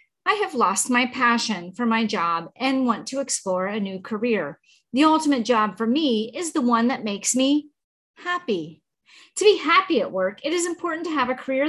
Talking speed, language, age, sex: 200 wpm, English, 40-59, female